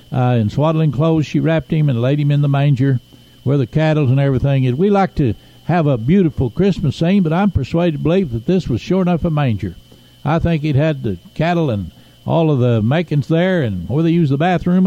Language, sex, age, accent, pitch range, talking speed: English, male, 60-79, American, 130-175 Hz, 230 wpm